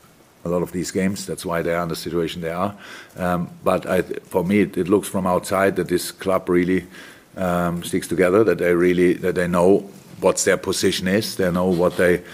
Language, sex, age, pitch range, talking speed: English, male, 50-69, 90-100 Hz, 220 wpm